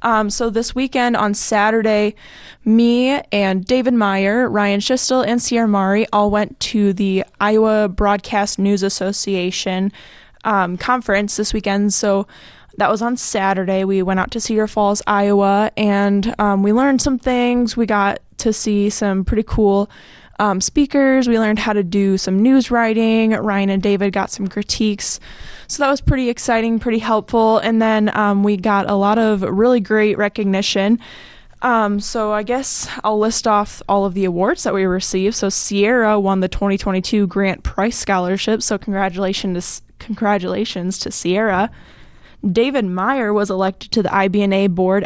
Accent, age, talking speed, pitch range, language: American, 20-39, 165 wpm, 195-225 Hz, English